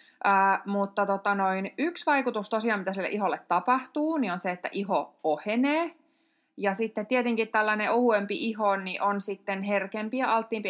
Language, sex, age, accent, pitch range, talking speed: Finnish, female, 20-39, native, 180-225 Hz, 165 wpm